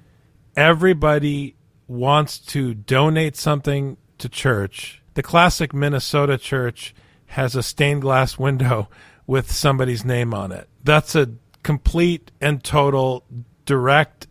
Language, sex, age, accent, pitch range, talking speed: English, male, 40-59, American, 125-155 Hz, 115 wpm